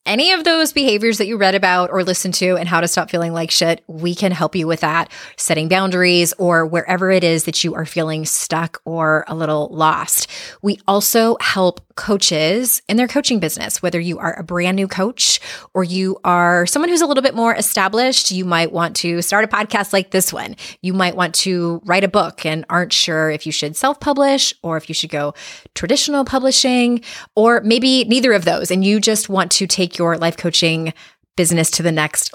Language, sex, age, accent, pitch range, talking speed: English, female, 20-39, American, 165-210 Hz, 210 wpm